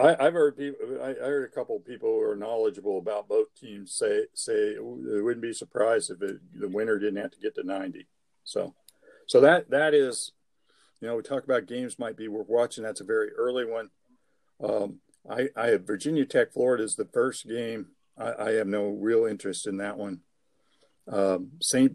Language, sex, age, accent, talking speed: English, male, 50-69, American, 200 wpm